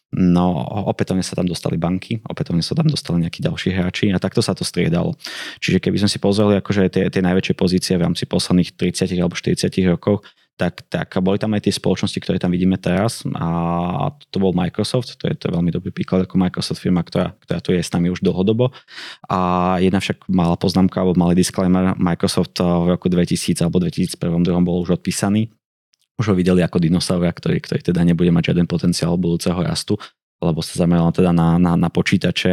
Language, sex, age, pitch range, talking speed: Slovak, male, 20-39, 85-100 Hz, 195 wpm